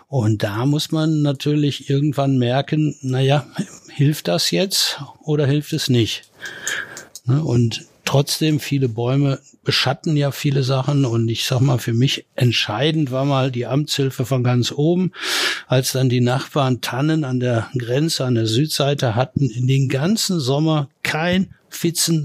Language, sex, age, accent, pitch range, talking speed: German, male, 60-79, German, 125-145 Hz, 150 wpm